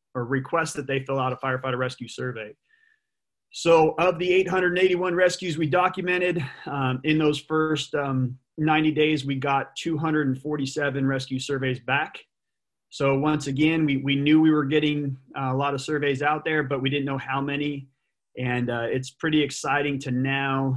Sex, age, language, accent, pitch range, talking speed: male, 30-49, English, American, 130-145 Hz, 170 wpm